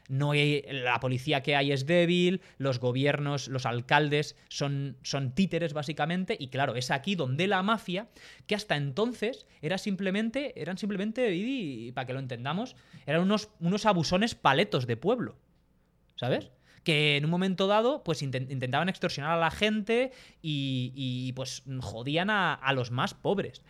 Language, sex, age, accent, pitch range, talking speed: Spanish, male, 20-39, Spanish, 135-180 Hz, 160 wpm